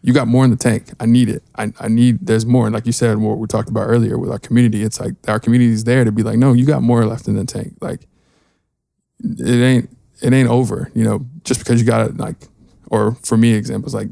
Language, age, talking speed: English, 20-39, 265 wpm